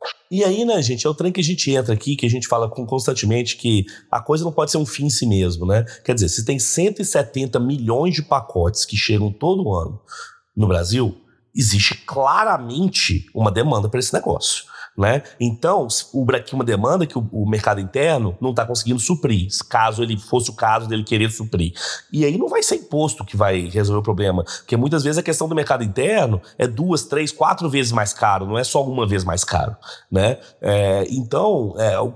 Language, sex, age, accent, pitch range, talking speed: Portuguese, male, 30-49, Brazilian, 110-145 Hz, 205 wpm